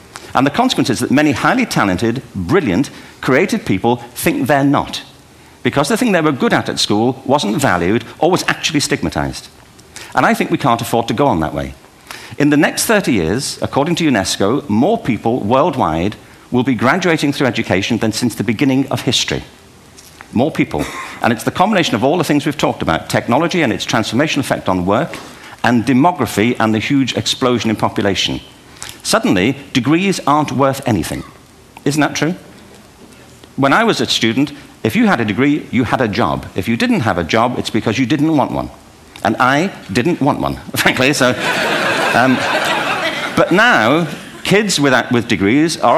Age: 50-69